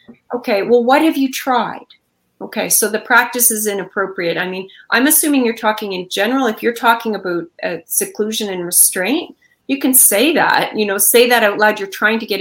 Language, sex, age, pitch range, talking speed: English, female, 30-49, 195-235 Hz, 205 wpm